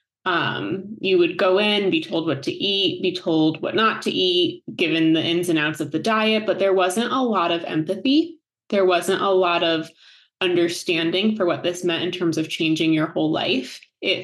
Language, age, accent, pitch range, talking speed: English, 20-39, American, 165-205 Hz, 205 wpm